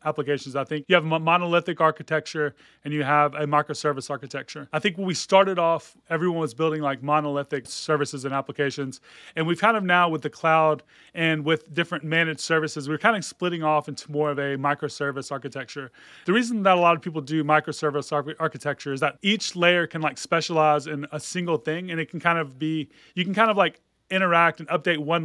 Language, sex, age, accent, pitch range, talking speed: English, male, 30-49, American, 150-170 Hz, 205 wpm